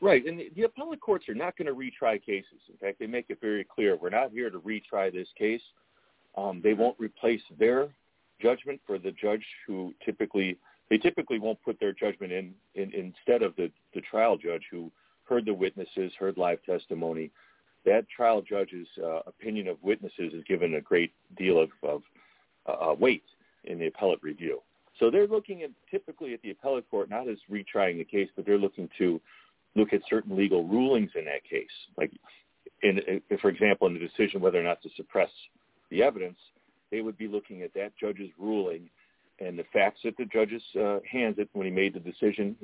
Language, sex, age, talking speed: English, male, 40-59, 205 wpm